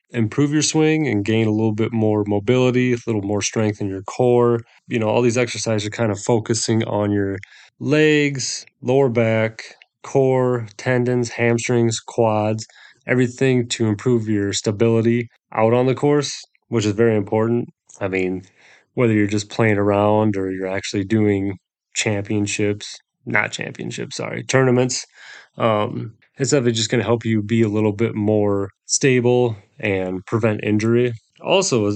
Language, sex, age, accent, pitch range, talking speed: English, male, 30-49, American, 110-125 Hz, 155 wpm